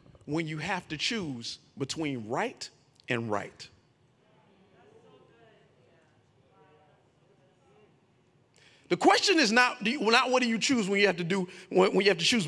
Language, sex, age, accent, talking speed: English, male, 40-59, American, 135 wpm